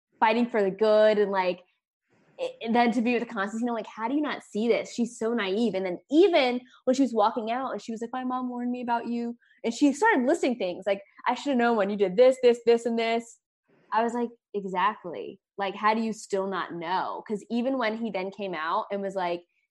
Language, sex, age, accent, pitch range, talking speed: English, female, 10-29, American, 185-245 Hz, 250 wpm